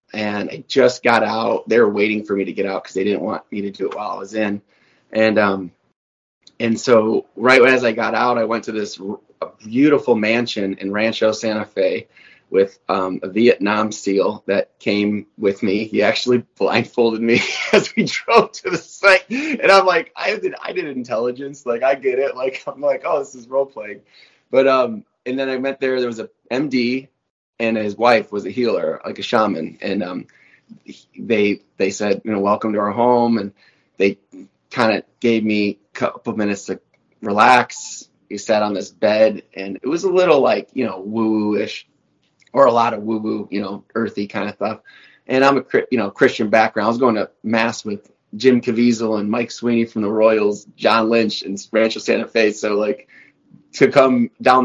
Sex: male